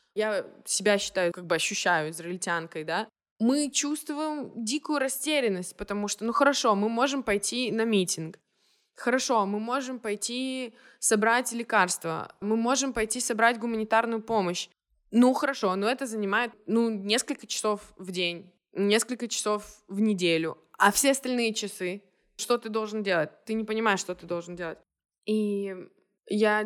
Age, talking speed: 20-39, 145 wpm